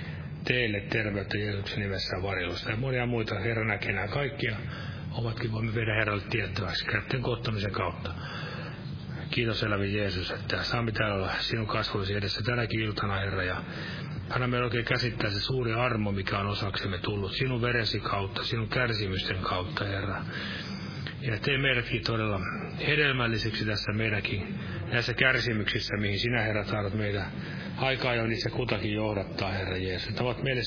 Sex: male